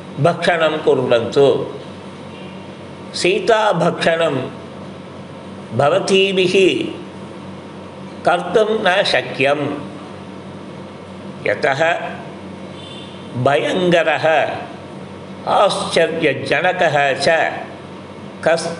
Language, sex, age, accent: Tamil, male, 50-69, native